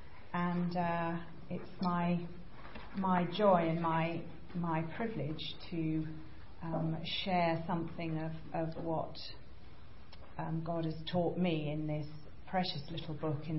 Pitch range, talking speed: 150-165 Hz, 125 wpm